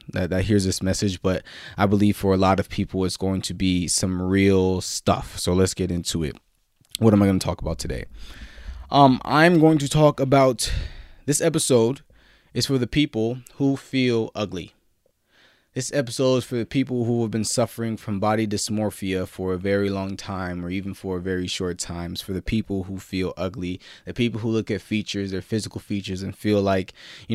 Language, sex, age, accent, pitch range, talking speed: English, male, 20-39, American, 95-115 Hz, 200 wpm